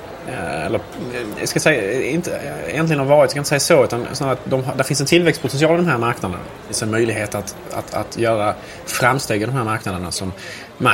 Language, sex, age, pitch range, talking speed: Swedish, male, 20-39, 95-120 Hz, 195 wpm